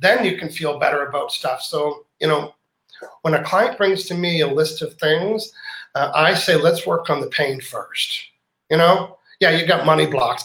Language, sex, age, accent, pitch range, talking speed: English, male, 40-59, American, 150-180 Hz, 205 wpm